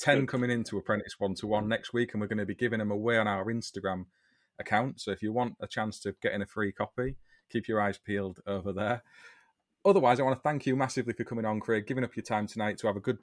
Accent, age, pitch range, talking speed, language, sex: British, 30-49, 100-120 Hz, 260 wpm, English, male